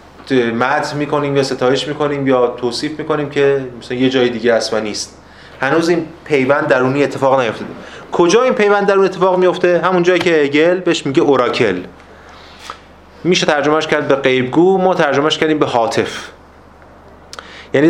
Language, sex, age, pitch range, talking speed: Persian, male, 30-49, 120-155 Hz, 150 wpm